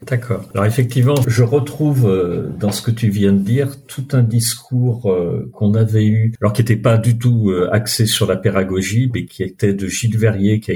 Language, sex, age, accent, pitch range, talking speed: French, male, 50-69, French, 100-125 Hz, 200 wpm